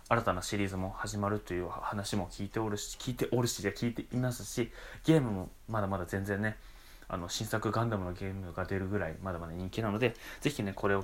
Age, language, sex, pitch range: 20-39, Japanese, male, 95-110 Hz